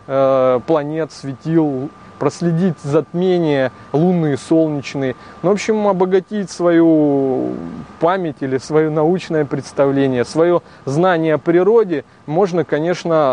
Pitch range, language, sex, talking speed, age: 135-170 Hz, Russian, male, 95 wpm, 20-39